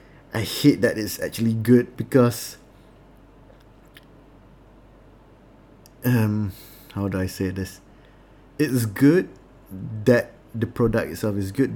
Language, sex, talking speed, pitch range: English, male, 105 wpm, 100-125 Hz